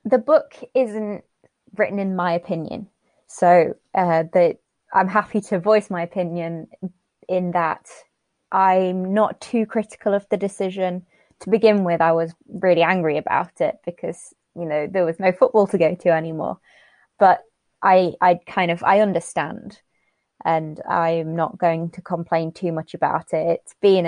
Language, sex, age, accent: English, female, 20-39, British